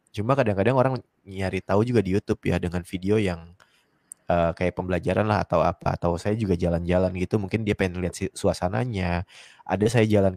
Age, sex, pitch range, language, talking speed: 20-39, male, 85-105 Hz, Indonesian, 185 wpm